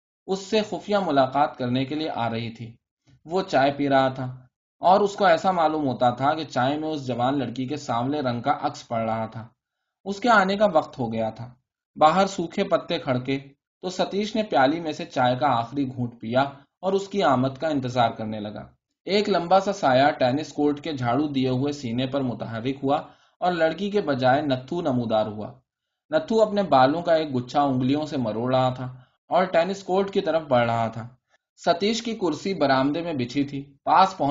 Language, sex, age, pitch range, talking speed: Urdu, male, 20-39, 125-170 Hz, 175 wpm